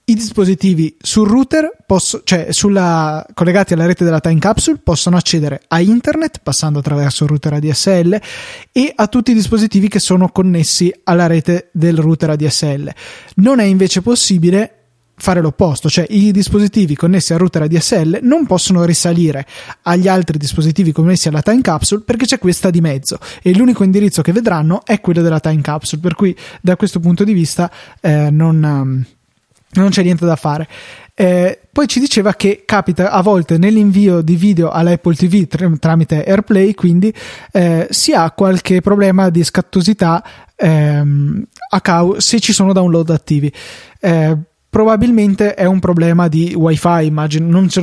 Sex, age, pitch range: male, 20-39, 160-200 Hz